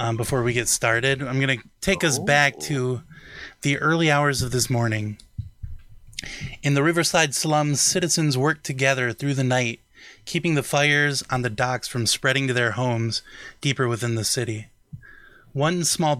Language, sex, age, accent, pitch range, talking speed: English, male, 20-39, American, 120-145 Hz, 165 wpm